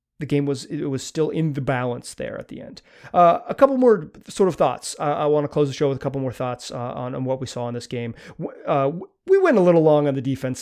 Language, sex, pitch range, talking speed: English, male, 150-225 Hz, 285 wpm